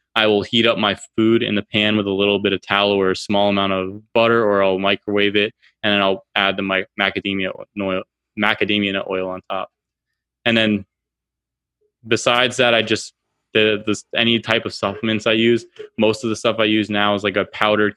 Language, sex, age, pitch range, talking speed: English, male, 20-39, 100-110 Hz, 205 wpm